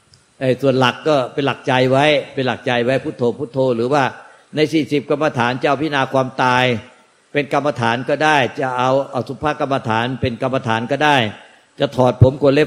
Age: 60-79